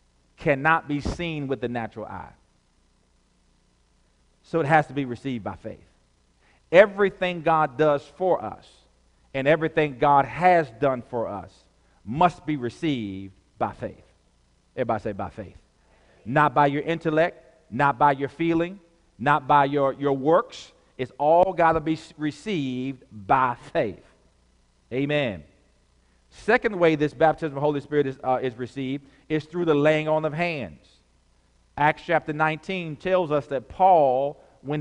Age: 50-69